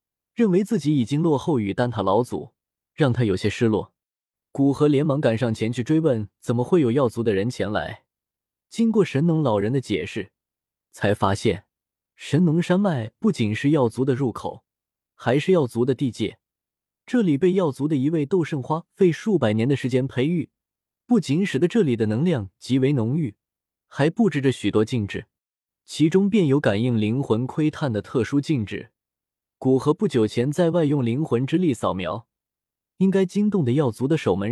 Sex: male